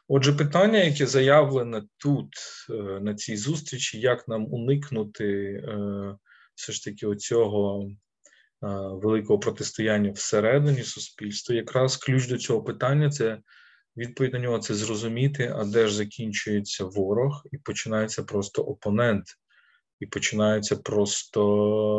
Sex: male